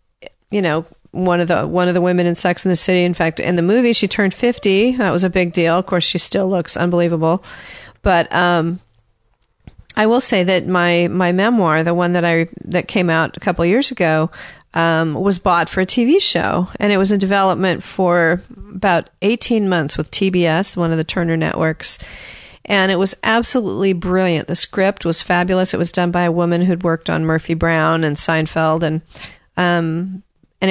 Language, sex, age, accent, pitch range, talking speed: English, female, 40-59, American, 170-195 Hz, 200 wpm